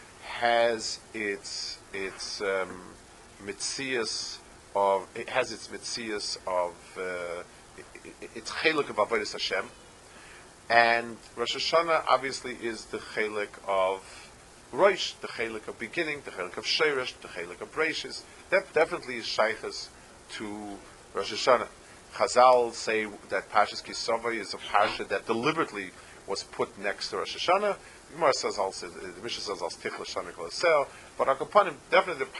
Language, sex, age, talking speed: English, male, 40-59, 120 wpm